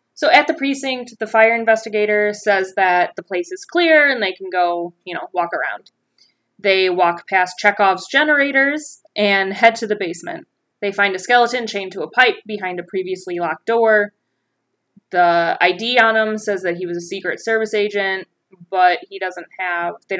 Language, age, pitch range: English, 20-39, 185-235 Hz